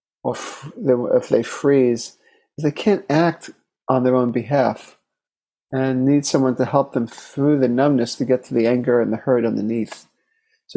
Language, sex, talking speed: English, male, 165 wpm